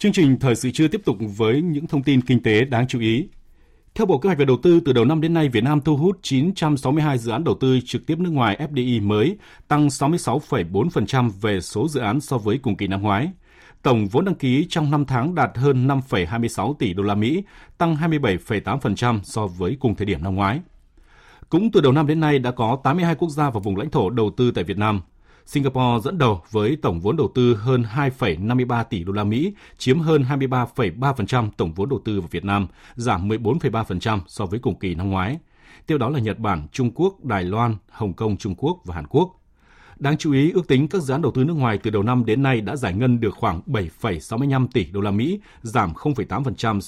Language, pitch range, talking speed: Vietnamese, 105-145 Hz, 225 wpm